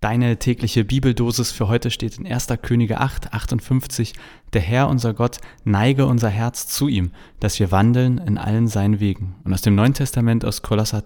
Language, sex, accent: German, male, German